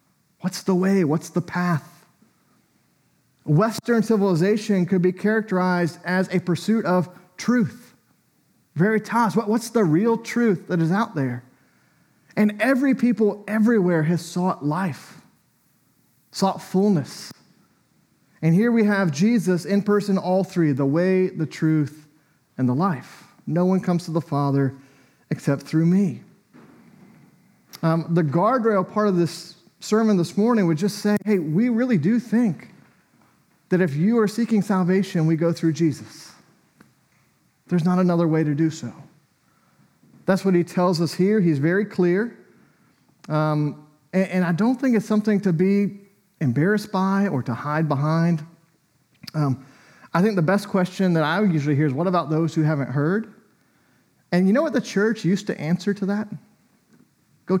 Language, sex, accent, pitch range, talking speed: English, male, American, 160-205 Hz, 155 wpm